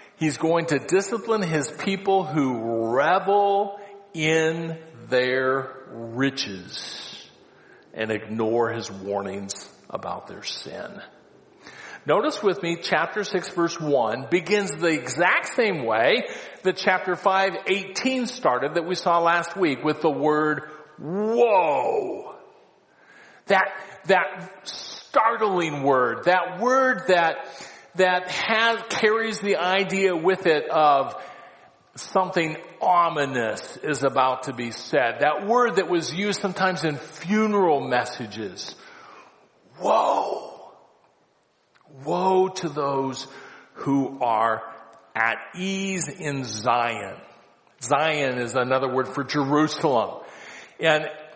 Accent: American